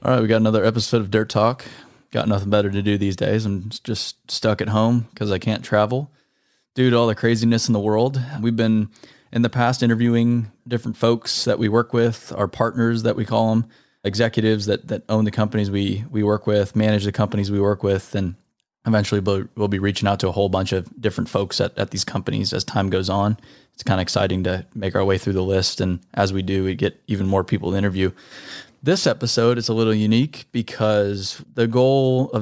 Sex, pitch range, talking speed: male, 100-120 Hz, 225 wpm